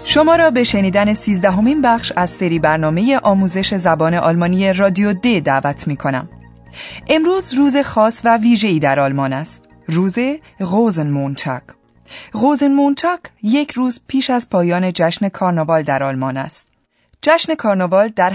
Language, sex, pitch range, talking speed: Persian, female, 160-240 Hz, 140 wpm